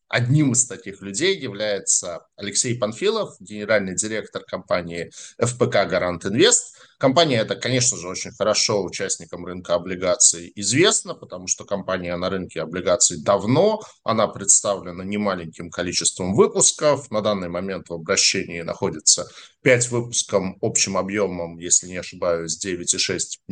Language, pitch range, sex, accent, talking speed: Russian, 95-125 Hz, male, native, 125 wpm